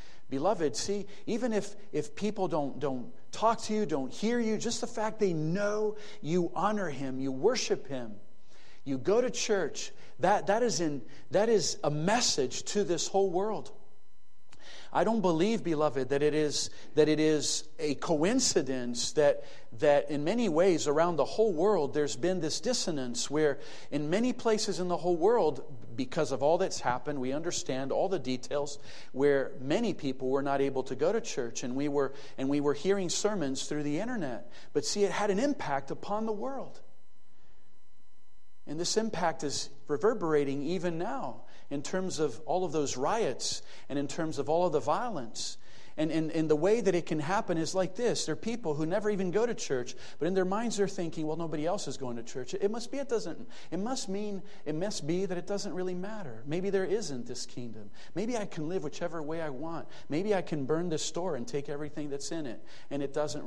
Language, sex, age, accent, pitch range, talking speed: English, male, 40-59, American, 140-200 Hz, 205 wpm